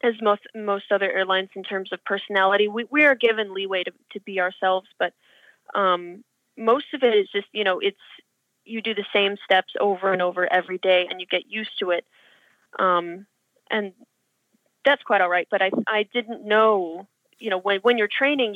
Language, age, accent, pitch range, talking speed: English, 30-49, American, 185-225 Hz, 195 wpm